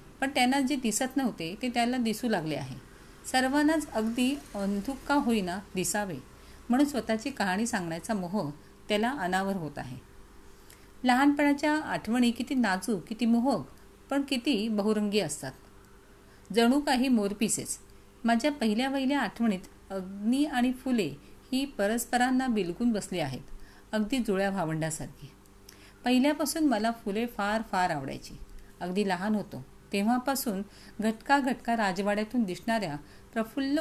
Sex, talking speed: female, 120 wpm